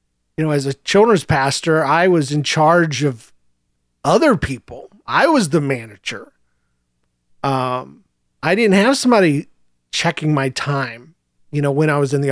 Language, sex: English, male